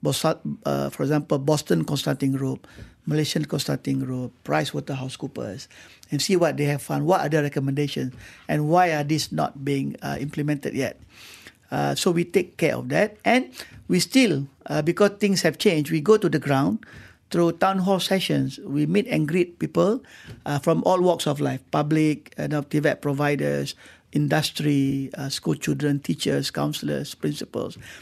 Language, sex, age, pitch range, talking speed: English, male, 50-69, 145-195 Hz, 165 wpm